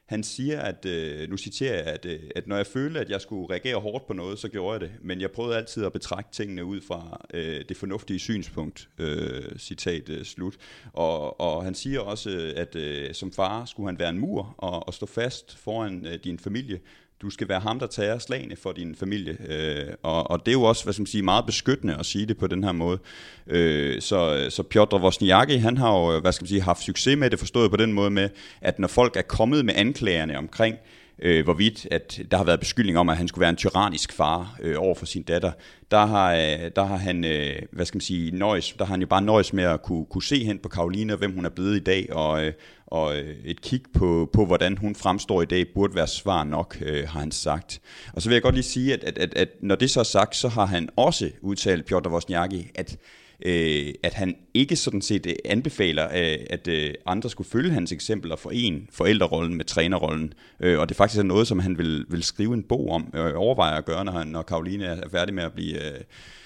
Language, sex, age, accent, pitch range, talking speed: Danish, male, 30-49, native, 85-105 Hz, 220 wpm